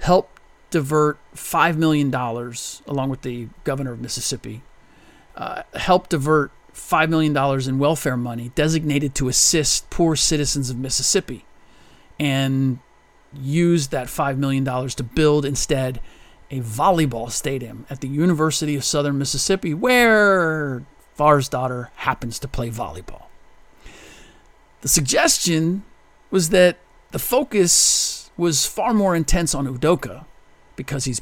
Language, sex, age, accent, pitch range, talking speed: English, male, 40-59, American, 130-160 Hz, 125 wpm